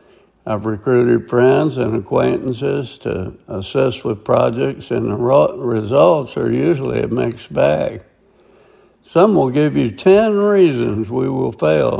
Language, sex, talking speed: English, male, 130 wpm